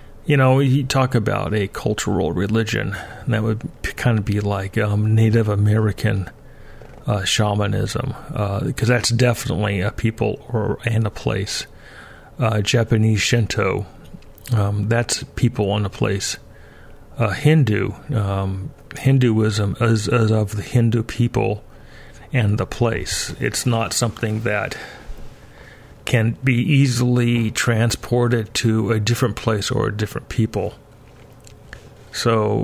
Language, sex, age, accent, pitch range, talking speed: English, male, 40-59, American, 110-125 Hz, 125 wpm